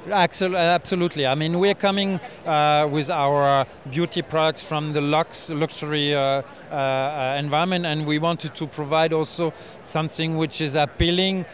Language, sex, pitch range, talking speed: English, male, 145-170 Hz, 145 wpm